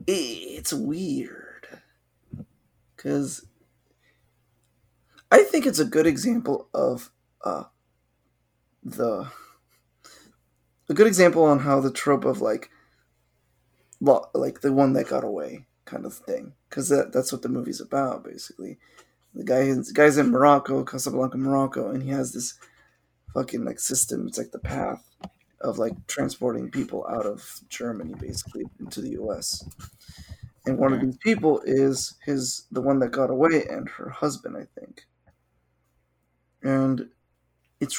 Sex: male